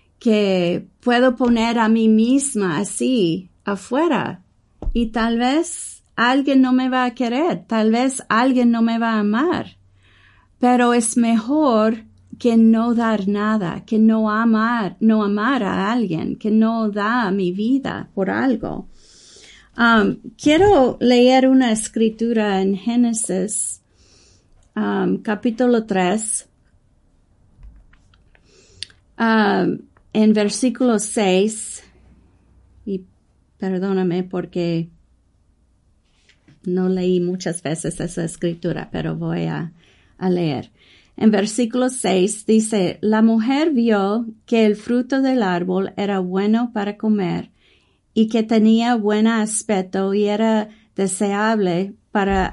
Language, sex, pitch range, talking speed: English, female, 185-235 Hz, 110 wpm